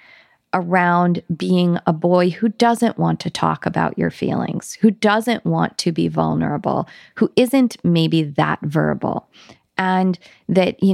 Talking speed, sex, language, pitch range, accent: 145 wpm, female, English, 170-210 Hz, American